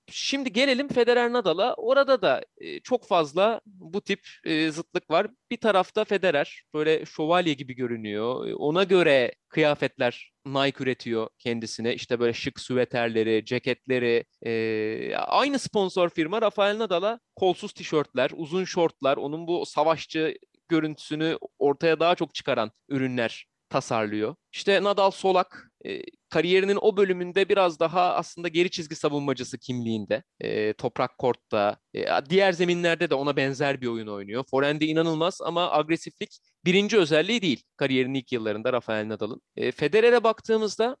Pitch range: 125-185 Hz